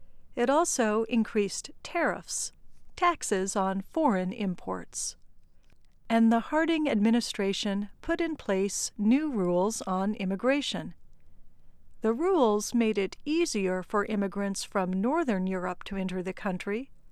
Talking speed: 115 wpm